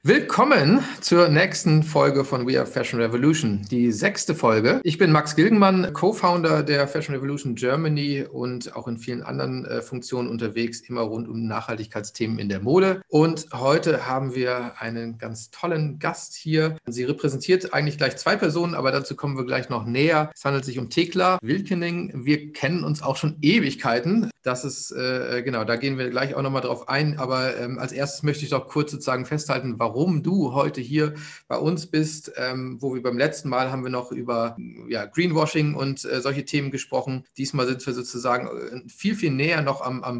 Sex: male